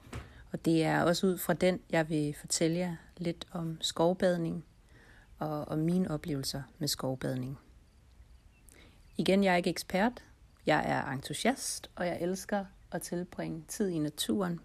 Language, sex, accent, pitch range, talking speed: Danish, female, native, 150-185 Hz, 150 wpm